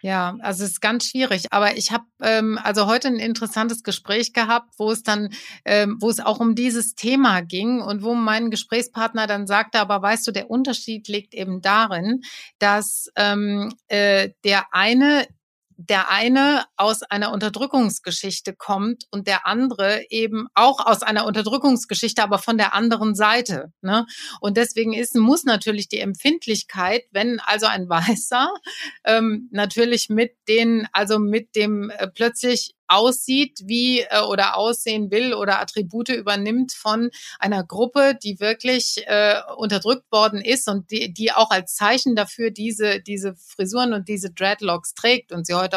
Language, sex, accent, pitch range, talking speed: German, female, German, 200-235 Hz, 155 wpm